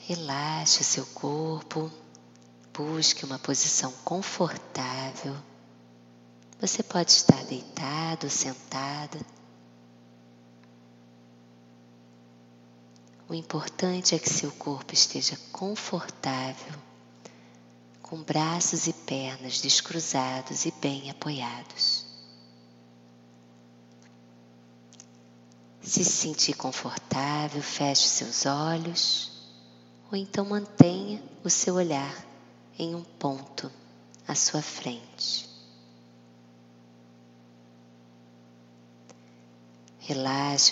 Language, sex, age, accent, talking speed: Portuguese, female, 20-39, Brazilian, 70 wpm